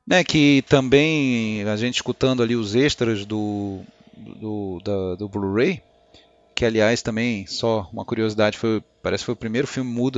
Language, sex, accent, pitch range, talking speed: Portuguese, male, Brazilian, 105-125 Hz, 165 wpm